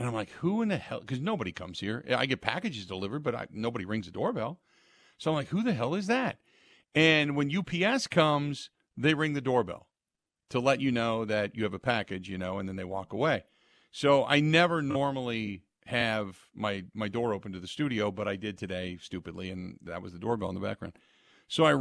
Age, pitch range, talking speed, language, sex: 40-59, 110-170 Hz, 220 wpm, English, male